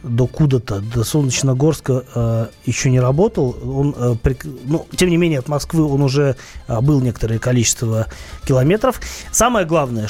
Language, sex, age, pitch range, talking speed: Russian, male, 30-49, 125-165 Hz, 160 wpm